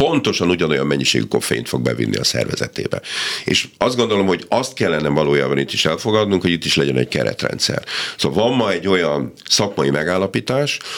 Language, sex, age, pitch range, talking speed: Hungarian, male, 50-69, 70-95 Hz, 170 wpm